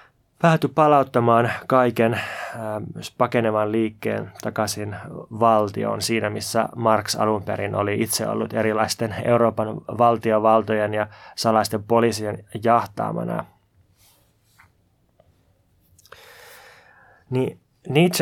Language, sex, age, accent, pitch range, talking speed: Finnish, male, 20-39, native, 105-120 Hz, 80 wpm